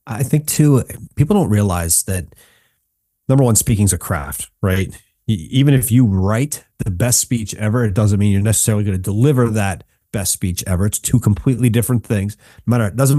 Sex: male